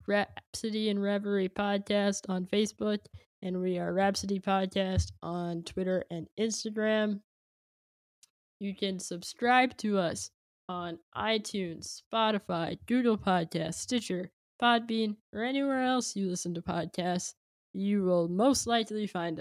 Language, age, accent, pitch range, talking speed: English, 10-29, American, 180-220 Hz, 120 wpm